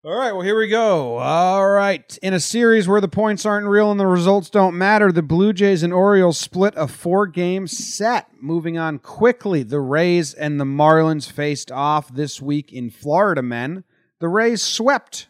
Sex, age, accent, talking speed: male, 30-49, American, 190 wpm